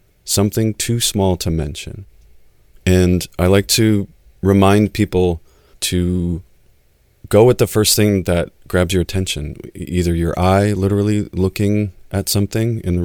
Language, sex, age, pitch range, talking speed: English, male, 30-49, 85-100 Hz, 135 wpm